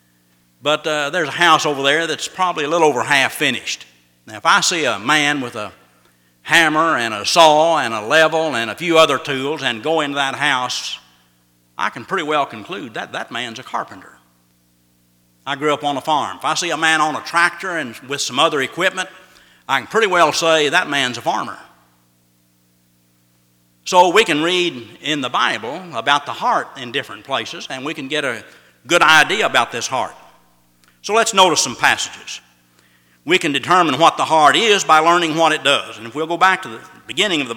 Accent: American